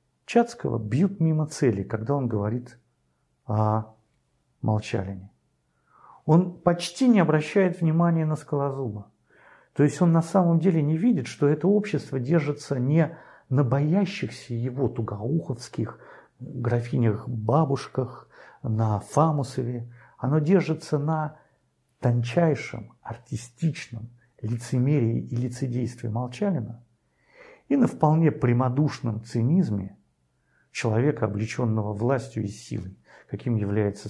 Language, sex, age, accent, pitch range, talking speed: Russian, male, 50-69, native, 115-155 Hz, 100 wpm